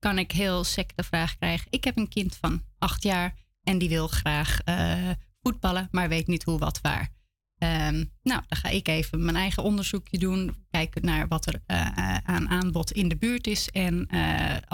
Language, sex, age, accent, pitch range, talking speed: Dutch, female, 30-49, Dutch, 160-190 Hz, 195 wpm